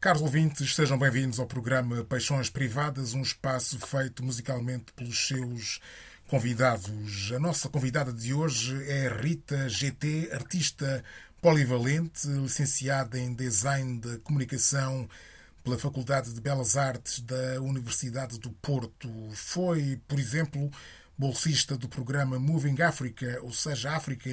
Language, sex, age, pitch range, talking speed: Portuguese, male, 20-39, 125-145 Hz, 125 wpm